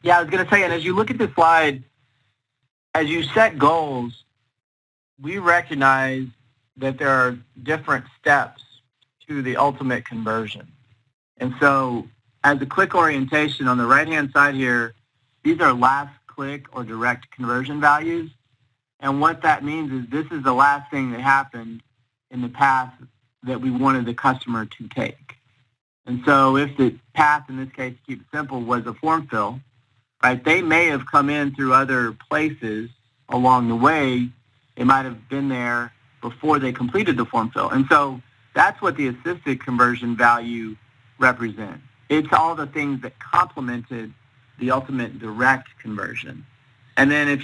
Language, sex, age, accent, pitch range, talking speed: English, male, 40-59, American, 120-145 Hz, 165 wpm